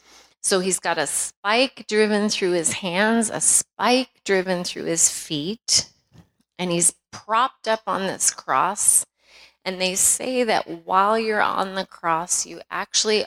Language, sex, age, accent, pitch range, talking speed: English, female, 30-49, American, 165-205 Hz, 150 wpm